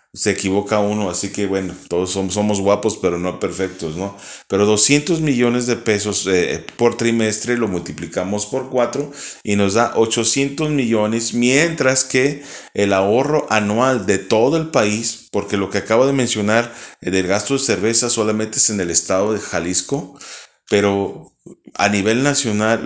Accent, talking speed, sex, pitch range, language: Mexican, 165 wpm, male, 95-120 Hz, Spanish